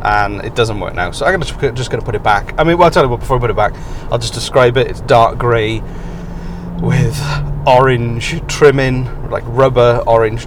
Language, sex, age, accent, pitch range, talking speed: English, male, 30-49, British, 105-130 Hz, 210 wpm